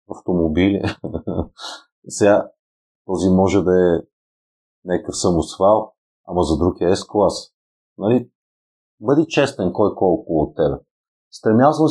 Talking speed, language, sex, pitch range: 105 wpm, Bulgarian, male, 90-105 Hz